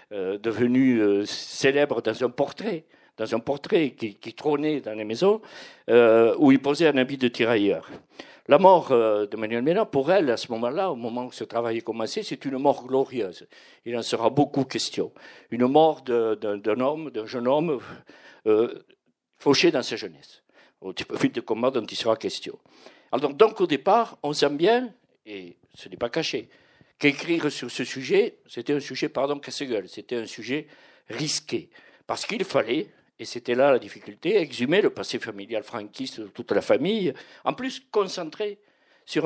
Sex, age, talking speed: male, 50-69, 180 wpm